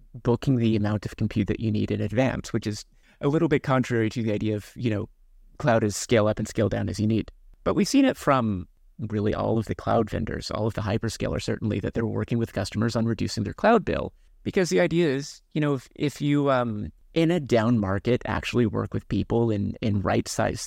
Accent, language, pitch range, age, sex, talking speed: American, English, 105-130 Hz, 30-49, male, 230 wpm